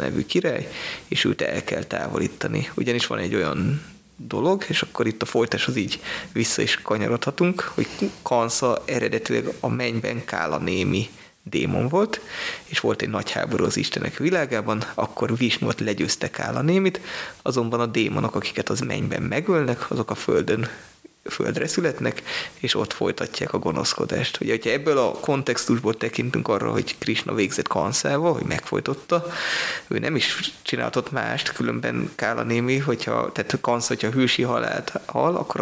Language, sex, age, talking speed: Hungarian, male, 20-39, 150 wpm